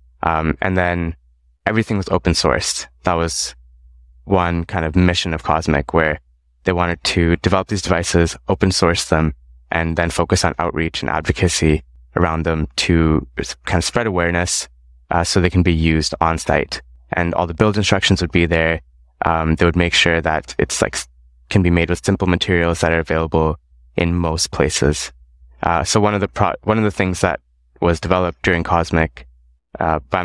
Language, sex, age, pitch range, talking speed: English, male, 20-39, 65-90 Hz, 185 wpm